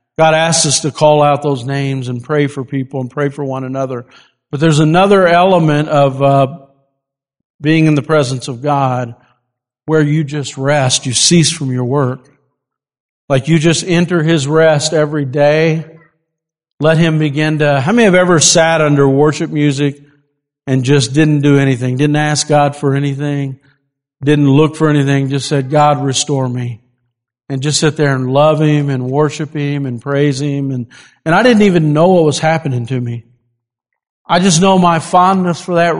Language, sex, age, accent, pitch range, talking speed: English, male, 50-69, American, 135-165 Hz, 180 wpm